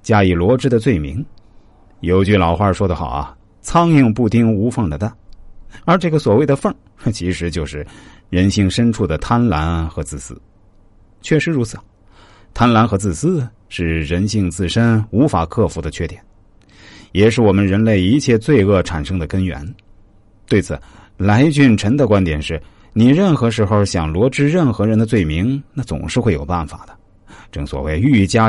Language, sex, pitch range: Chinese, male, 90-120 Hz